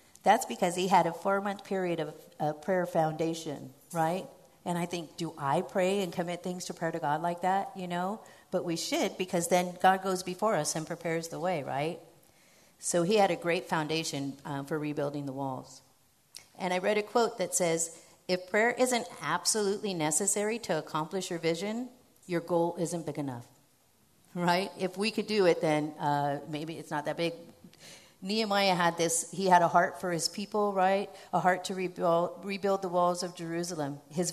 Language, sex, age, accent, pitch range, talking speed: English, female, 50-69, American, 155-190 Hz, 190 wpm